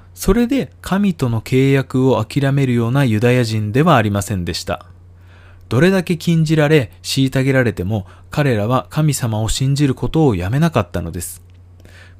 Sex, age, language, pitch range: male, 20-39, Japanese, 95-155 Hz